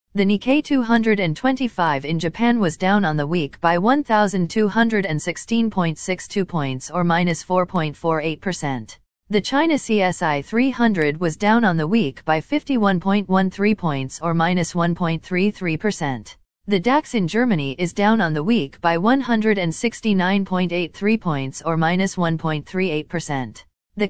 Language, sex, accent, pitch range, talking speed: English, female, American, 165-220 Hz, 115 wpm